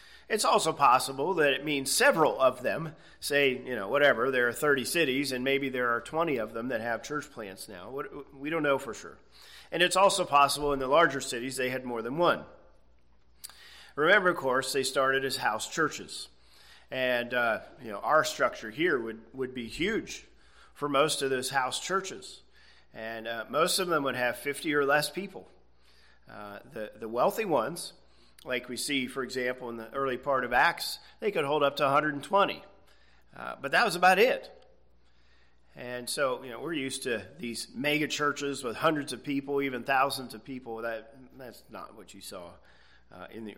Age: 40-59